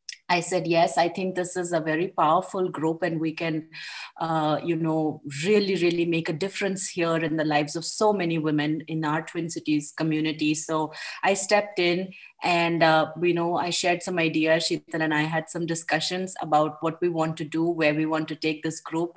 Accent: Indian